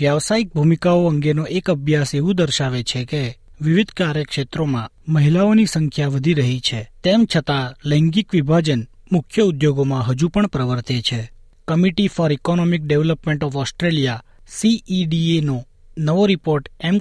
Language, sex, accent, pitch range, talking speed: Gujarati, male, native, 130-175 Hz, 125 wpm